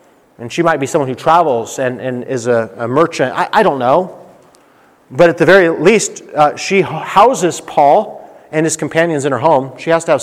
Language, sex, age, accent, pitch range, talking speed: English, male, 30-49, American, 130-165 Hz, 210 wpm